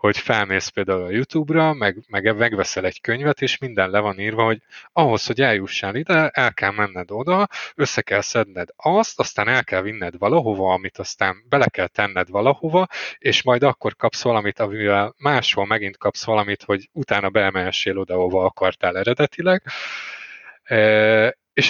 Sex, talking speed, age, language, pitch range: male, 160 wpm, 20-39, Hungarian, 95-120 Hz